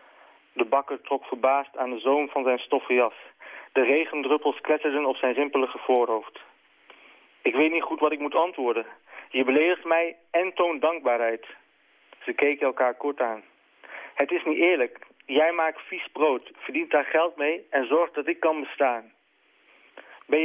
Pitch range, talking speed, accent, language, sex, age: 130-160 Hz, 165 wpm, Dutch, Dutch, male, 40-59